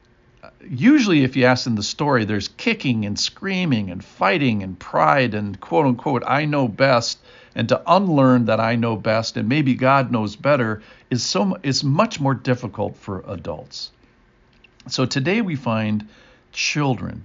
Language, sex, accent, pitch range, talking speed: English, male, American, 100-130 Hz, 160 wpm